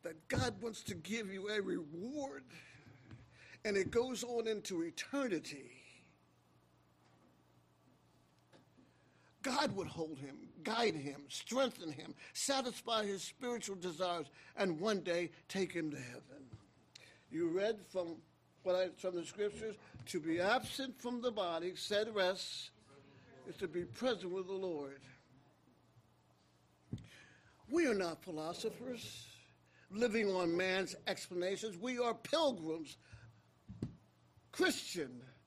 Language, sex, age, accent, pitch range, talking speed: English, male, 60-79, American, 140-220 Hz, 115 wpm